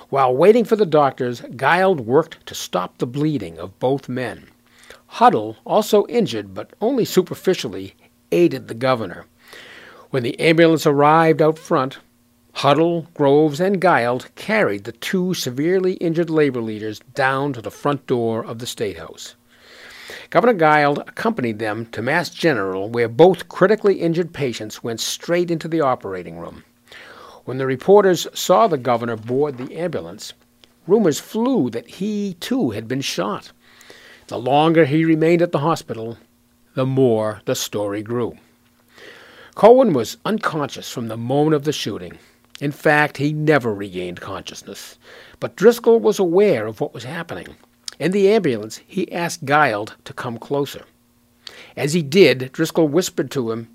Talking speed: 150 wpm